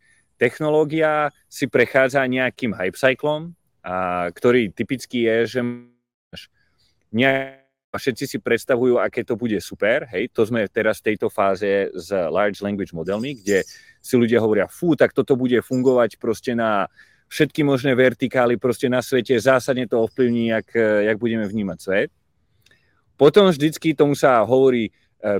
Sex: male